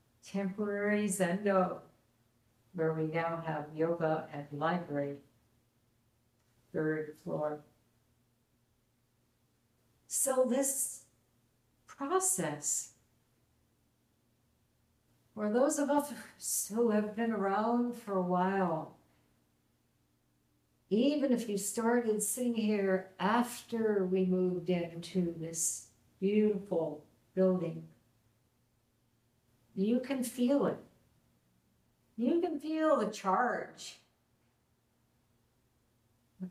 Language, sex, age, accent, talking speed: English, female, 60-79, American, 80 wpm